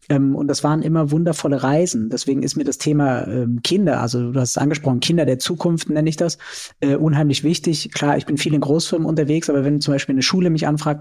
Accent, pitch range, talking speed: German, 135-155 Hz, 220 wpm